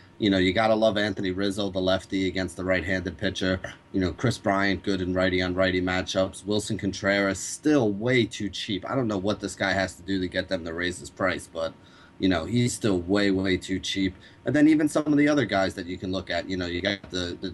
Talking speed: 250 wpm